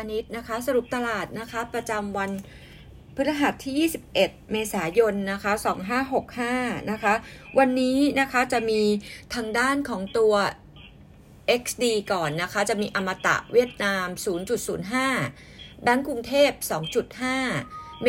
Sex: female